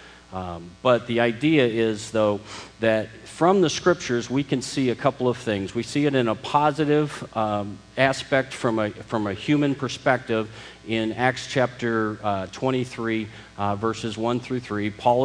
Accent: American